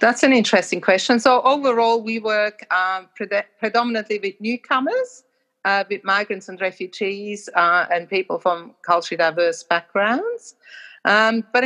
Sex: female